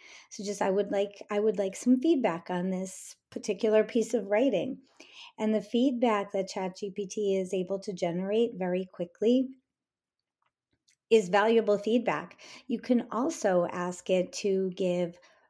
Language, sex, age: English, female, 40-59